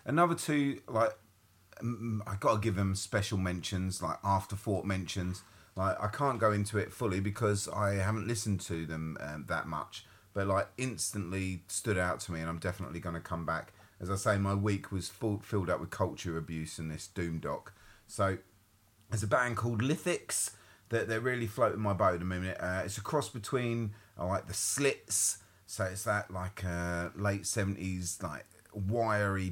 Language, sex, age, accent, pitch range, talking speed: English, male, 30-49, British, 90-110 Hz, 190 wpm